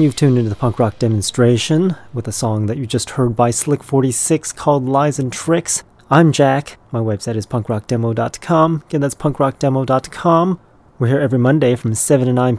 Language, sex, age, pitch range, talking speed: English, male, 30-49, 105-130 Hz, 180 wpm